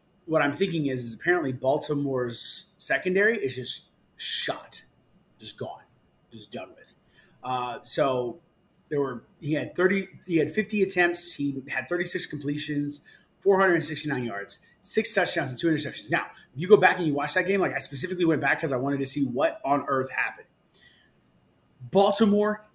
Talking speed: 165 wpm